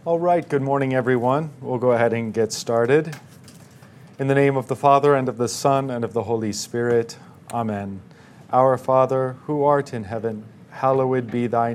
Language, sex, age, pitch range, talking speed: English, male, 40-59, 110-130 Hz, 185 wpm